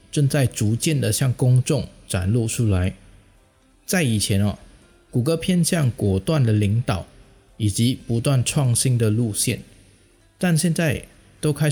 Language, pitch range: Chinese, 105-140 Hz